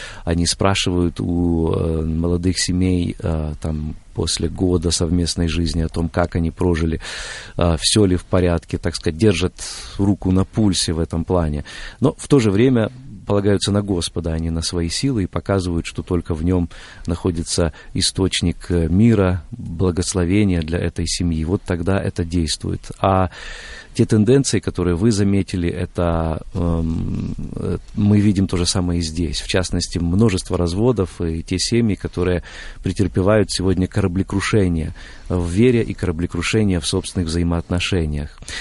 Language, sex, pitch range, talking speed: Russian, male, 85-100 Hz, 140 wpm